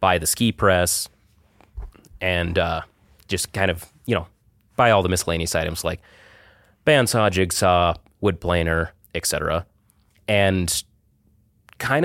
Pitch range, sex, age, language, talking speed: 85-100 Hz, male, 30-49, English, 125 wpm